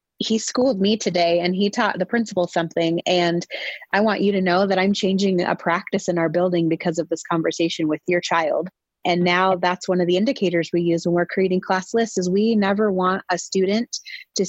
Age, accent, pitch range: 30-49, American, 175-205 Hz